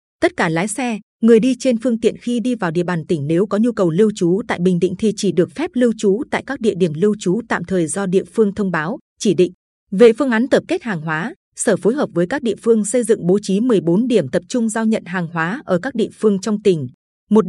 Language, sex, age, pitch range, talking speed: Vietnamese, female, 20-39, 180-230 Hz, 270 wpm